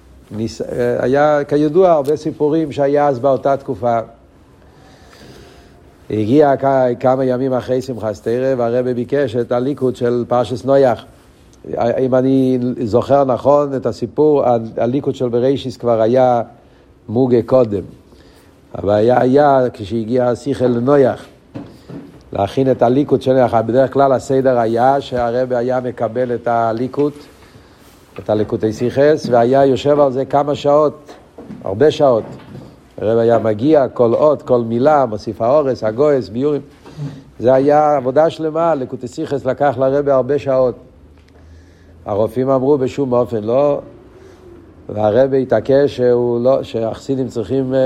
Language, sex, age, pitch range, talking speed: Hebrew, male, 50-69, 115-140 Hz, 120 wpm